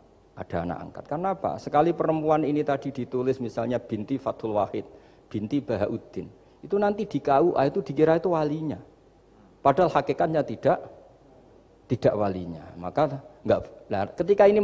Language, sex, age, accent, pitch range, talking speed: Indonesian, male, 50-69, native, 115-155 Hz, 140 wpm